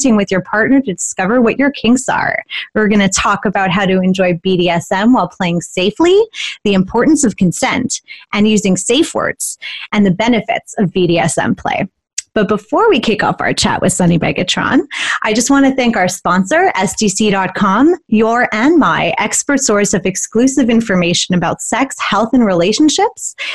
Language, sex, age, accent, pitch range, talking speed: English, female, 30-49, American, 185-245 Hz, 170 wpm